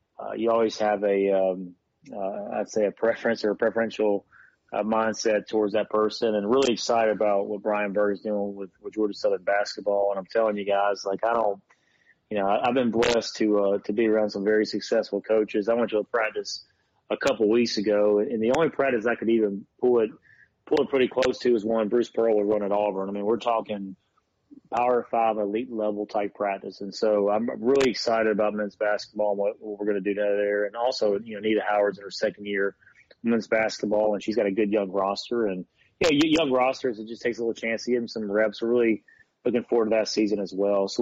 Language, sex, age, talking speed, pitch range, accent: English, male, 30-49, 235 wpm, 100-115 Hz, American